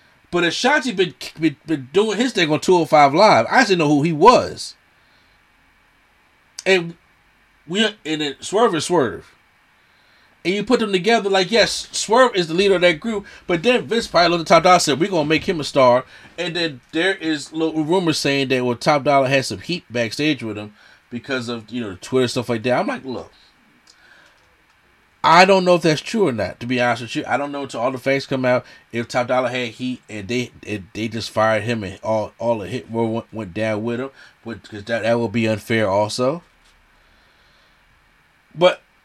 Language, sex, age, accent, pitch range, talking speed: English, male, 30-49, American, 120-175 Hz, 205 wpm